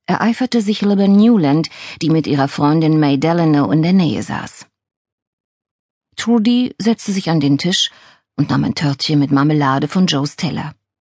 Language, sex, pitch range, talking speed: German, female, 145-190 Hz, 155 wpm